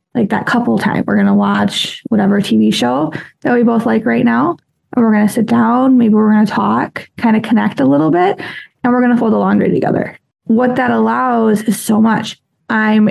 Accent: American